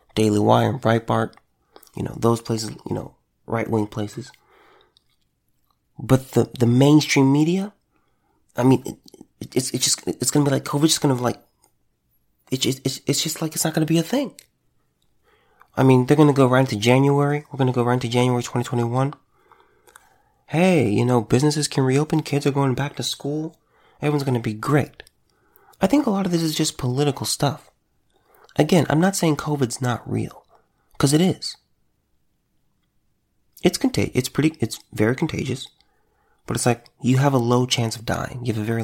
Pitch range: 110-150 Hz